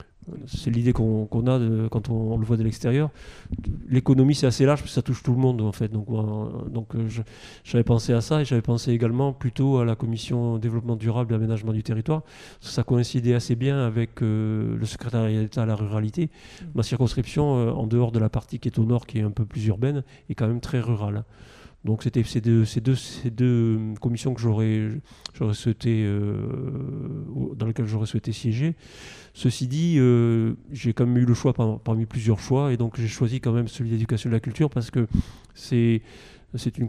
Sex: male